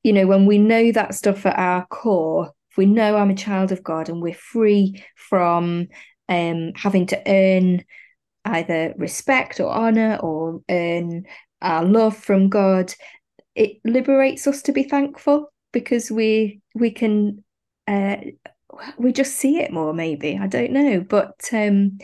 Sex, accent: female, British